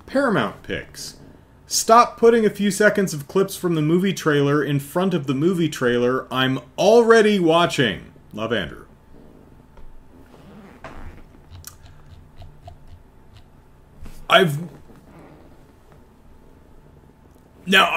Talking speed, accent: 85 wpm, American